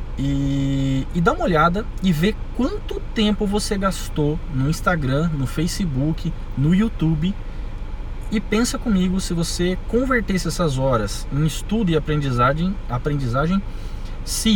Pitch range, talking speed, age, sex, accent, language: 130-190 Hz, 130 wpm, 20-39, male, Brazilian, Portuguese